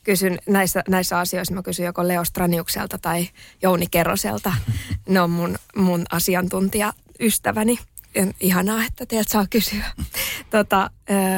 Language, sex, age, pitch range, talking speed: Finnish, female, 20-39, 165-195 Hz, 120 wpm